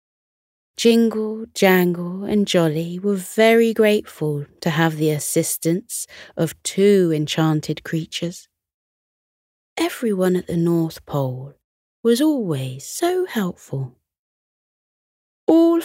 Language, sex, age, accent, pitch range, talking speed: English, female, 20-39, British, 155-200 Hz, 95 wpm